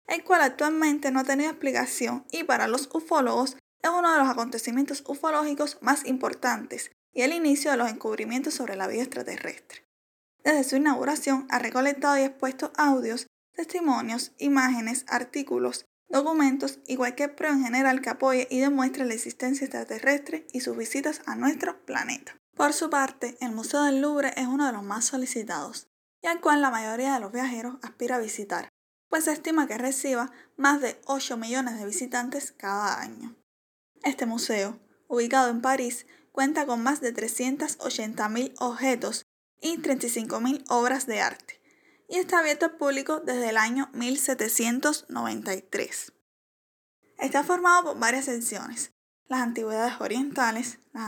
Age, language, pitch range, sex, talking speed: 10-29, Spanish, 240-285 Hz, female, 155 wpm